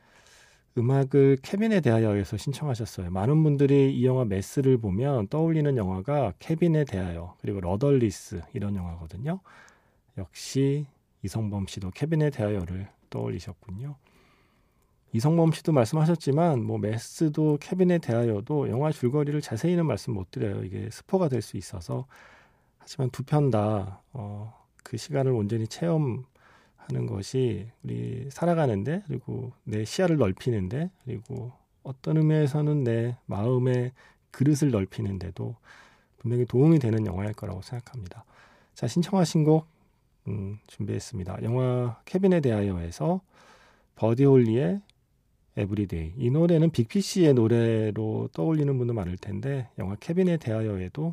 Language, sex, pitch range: Korean, male, 100-150 Hz